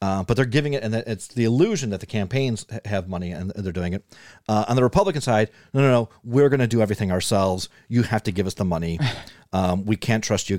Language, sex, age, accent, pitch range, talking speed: English, male, 40-59, American, 100-130 Hz, 250 wpm